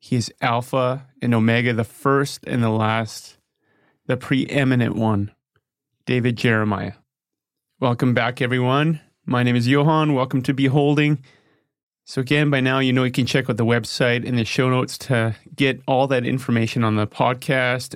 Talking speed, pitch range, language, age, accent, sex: 165 wpm, 120-145 Hz, English, 30-49, American, male